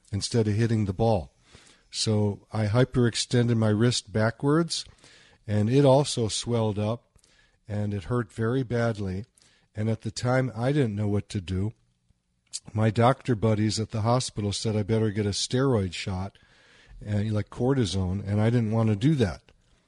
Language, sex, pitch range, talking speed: English, male, 105-120 Hz, 160 wpm